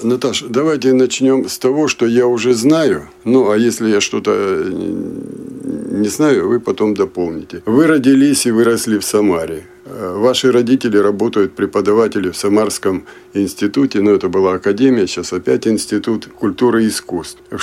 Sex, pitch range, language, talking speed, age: male, 95-125 Hz, Russian, 150 wpm, 50-69